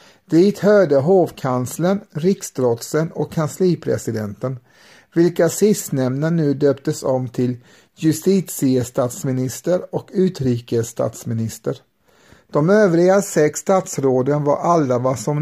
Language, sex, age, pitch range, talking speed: Swedish, male, 60-79, 130-170 Hz, 90 wpm